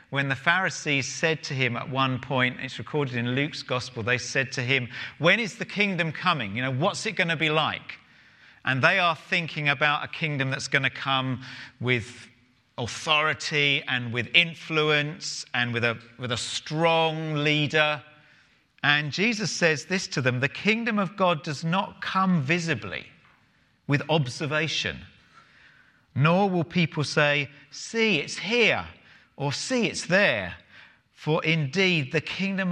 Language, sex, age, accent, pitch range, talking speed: English, male, 40-59, British, 120-165 Hz, 155 wpm